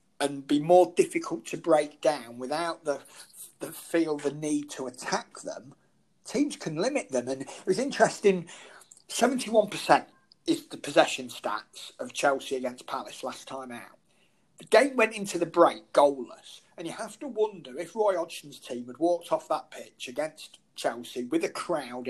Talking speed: 165 wpm